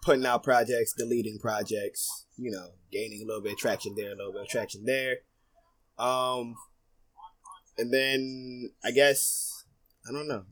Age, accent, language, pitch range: 20-39, American, English, 120-160 Hz